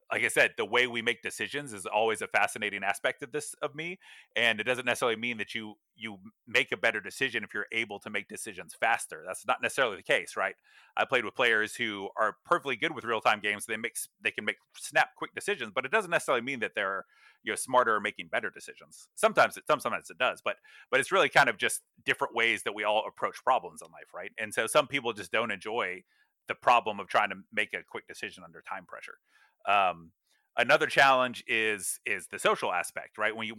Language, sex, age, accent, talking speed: English, male, 30-49, American, 230 wpm